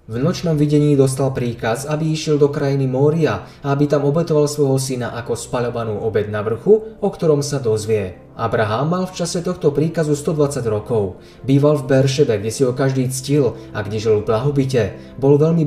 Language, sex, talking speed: Slovak, male, 185 wpm